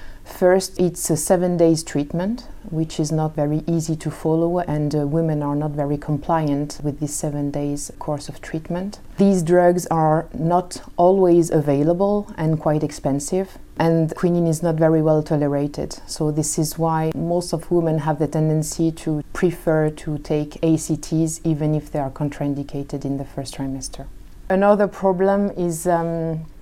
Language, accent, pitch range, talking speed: English, French, 150-175 Hz, 160 wpm